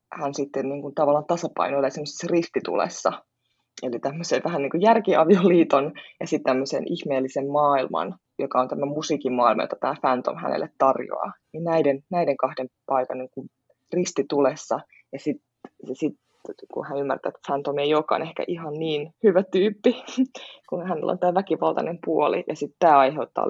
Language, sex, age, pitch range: Finnish, female, 20-39, 140-175 Hz